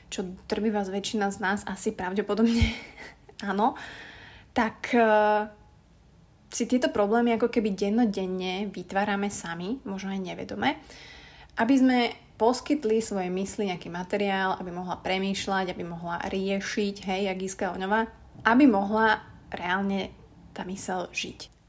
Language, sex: Slovak, female